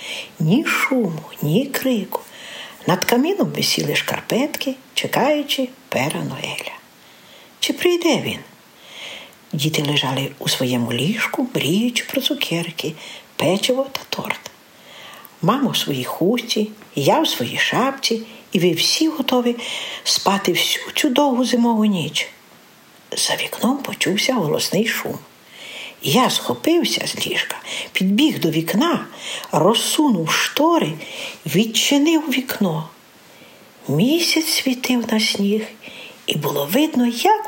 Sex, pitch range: female, 180-285 Hz